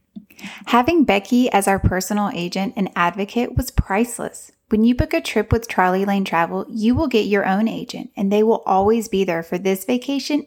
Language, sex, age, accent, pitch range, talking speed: English, female, 10-29, American, 195-260 Hz, 195 wpm